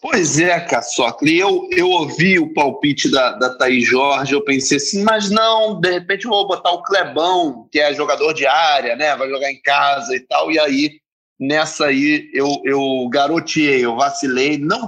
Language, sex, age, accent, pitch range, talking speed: Portuguese, male, 30-49, Brazilian, 135-200 Hz, 185 wpm